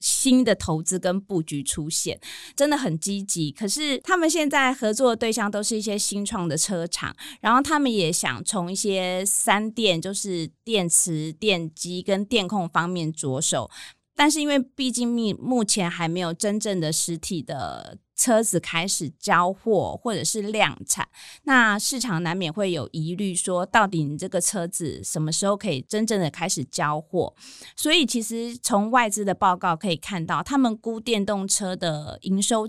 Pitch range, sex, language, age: 170-225 Hz, female, Chinese, 20-39